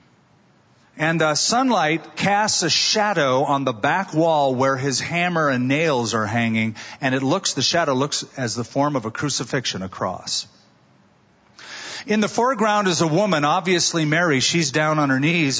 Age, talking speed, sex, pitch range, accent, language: 40-59, 165 wpm, male, 130-180 Hz, American, English